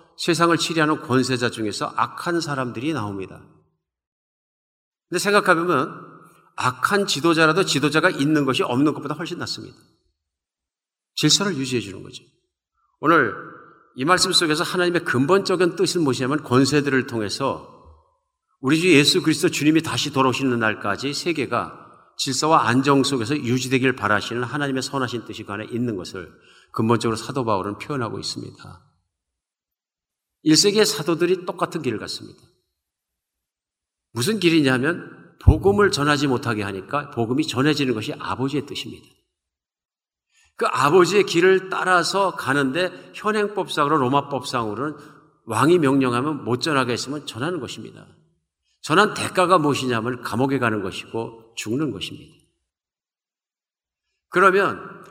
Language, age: Korean, 50-69